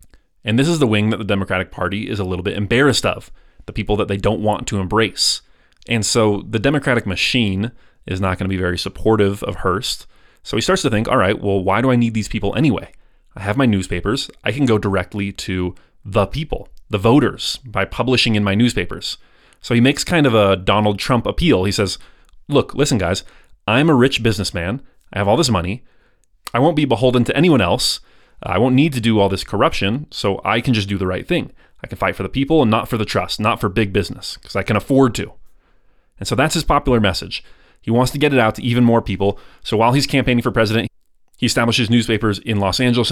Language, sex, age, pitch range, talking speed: English, male, 30-49, 100-120 Hz, 230 wpm